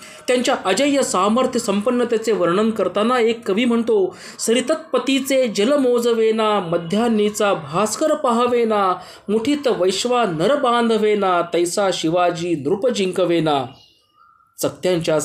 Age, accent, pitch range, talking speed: 20-39, native, 180-240 Hz, 90 wpm